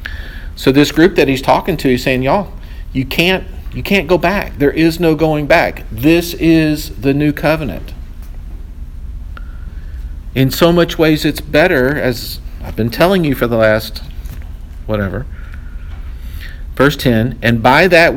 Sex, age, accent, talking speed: male, 50-69, American, 150 wpm